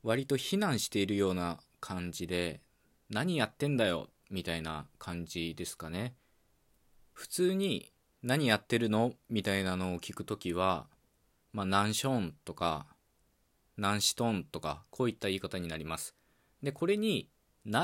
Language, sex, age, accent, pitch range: Japanese, male, 20-39, native, 90-115 Hz